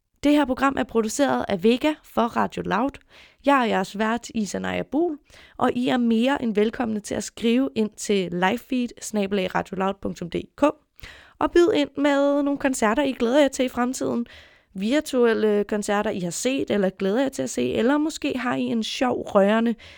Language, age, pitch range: Danish, 20-39, 200-250 Hz